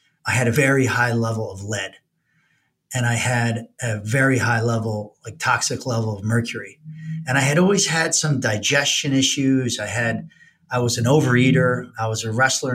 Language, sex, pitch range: English, male, 110-130 Hz